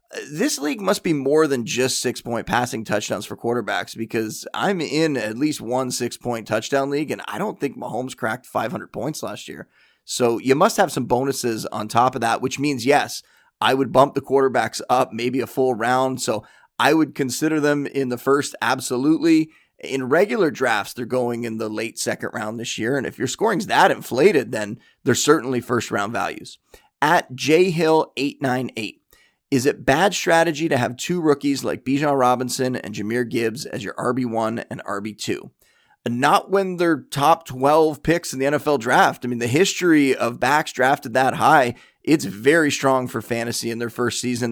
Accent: American